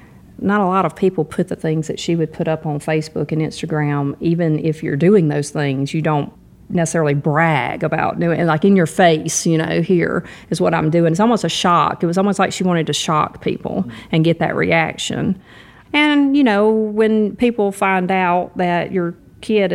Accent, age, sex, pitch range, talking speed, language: American, 40-59, female, 160-190 Hz, 205 wpm, English